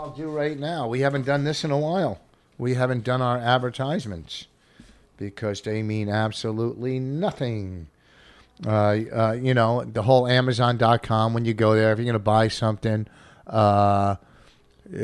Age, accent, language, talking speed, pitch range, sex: 50-69, American, English, 150 wpm, 100-120 Hz, male